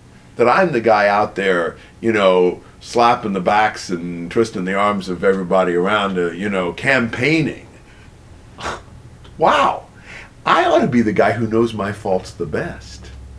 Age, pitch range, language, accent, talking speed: 50-69, 95-145 Hz, English, American, 155 wpm